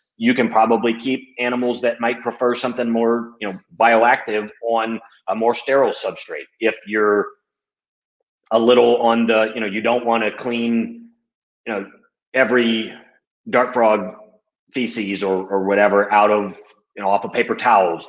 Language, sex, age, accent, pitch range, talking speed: English, male, 30-49, American, 100-125 Hz, 160 wpm